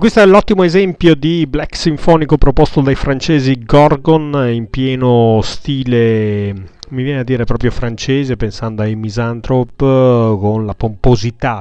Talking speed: 135 wpm